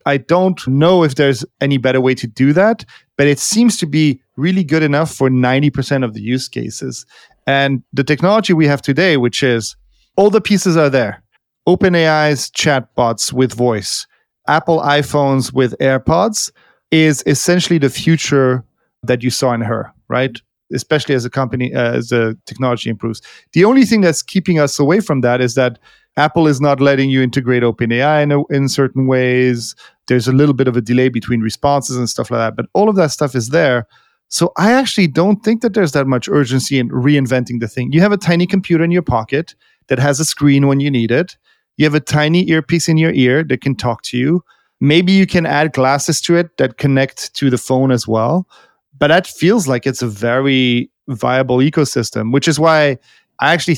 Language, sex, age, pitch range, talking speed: English, male, 40-59, 125-160 Hz, 200 wpm